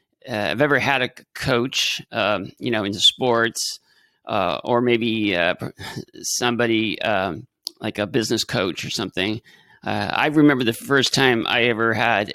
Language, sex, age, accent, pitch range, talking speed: English, male, 40-59, American, 115-150 Hz, 155 wpm